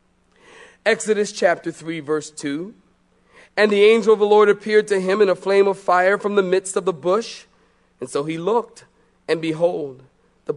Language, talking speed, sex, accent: English, 180 wpm, male, American